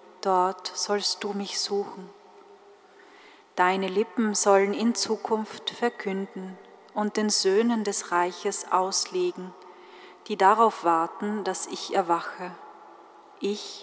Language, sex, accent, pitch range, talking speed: German, female, German, 185-225 Hz, 105 wpm